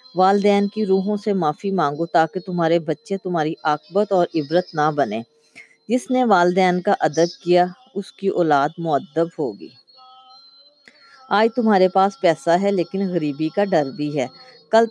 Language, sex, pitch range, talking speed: Urdu, female, 160-205 Hz, 155 wpm